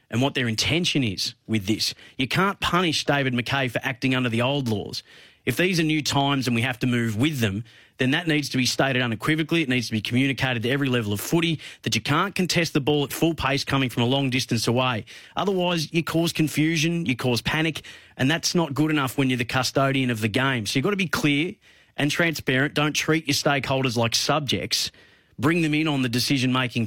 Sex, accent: male, Australian